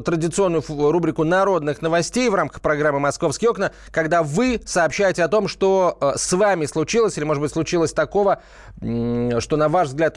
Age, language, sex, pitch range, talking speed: 30-49, Russian, male, 130-180 Hz, 160 wpm